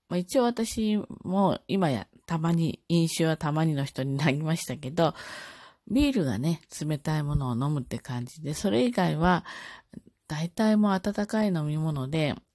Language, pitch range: Japanese, 135-185 Hz